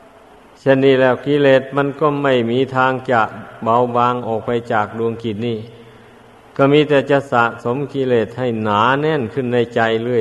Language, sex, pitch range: Thai, male, 115-130 Hz